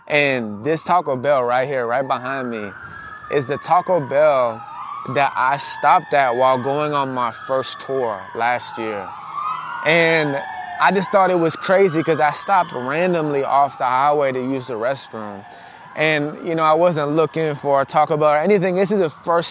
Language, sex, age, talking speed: English, male, 20-39, 180 wpm